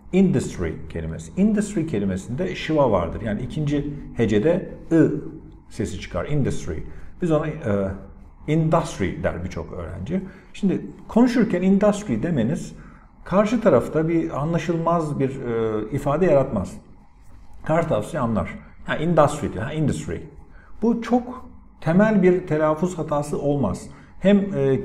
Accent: native